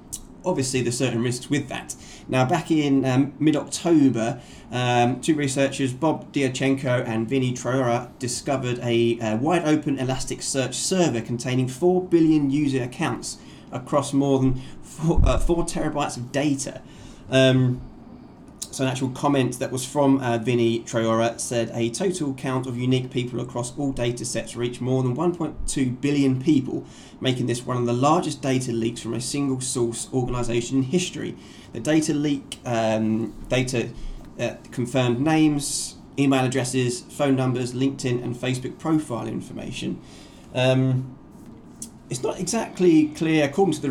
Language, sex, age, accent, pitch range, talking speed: English, male, 20-39, British, 120-145 Hz, 145 wpm